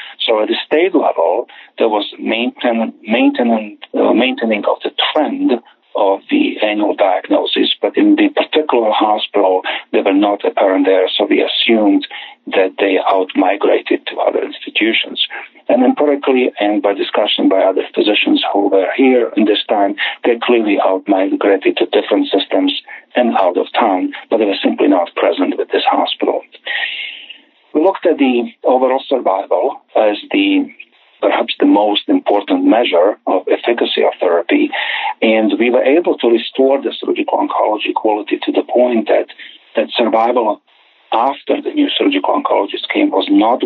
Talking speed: 155 wpm